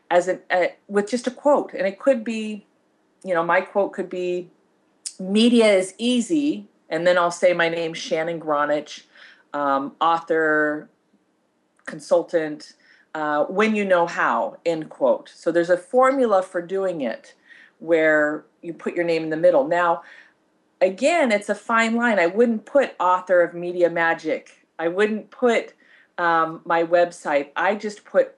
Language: English